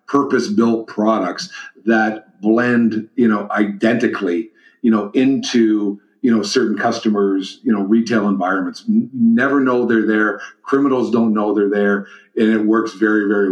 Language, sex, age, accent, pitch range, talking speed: English, male, 50-69, American, 105-120 Hz, 145 wpm